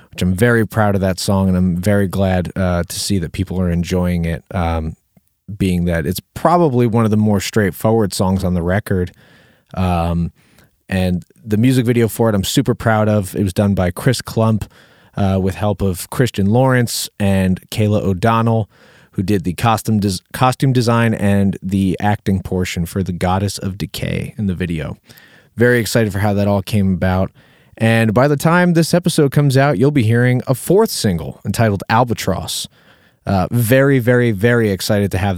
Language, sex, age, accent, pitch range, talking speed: English, male, 30-49, American, 90-115 Hz, 185 wpm